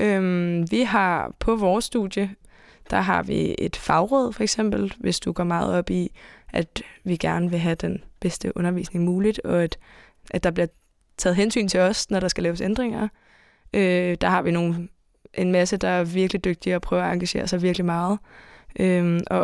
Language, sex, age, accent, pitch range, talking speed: Danish, female, 20-39, native, 175-205 Hz, 180 wpm